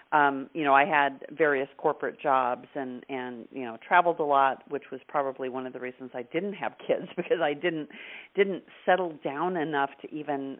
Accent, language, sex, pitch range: American, English, female, 130-155 Hz